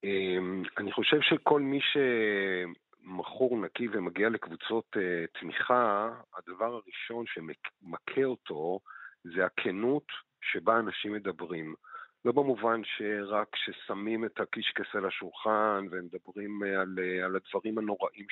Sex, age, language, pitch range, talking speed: male, 50-69, Hebrew, 95-115 Hz, 100 wpm